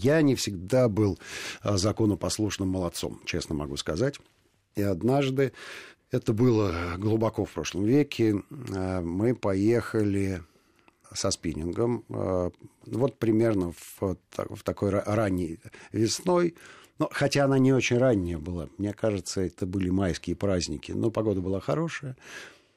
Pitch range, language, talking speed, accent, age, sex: 90-120 Hz, Russian, 115 wpm, native, 50-69, male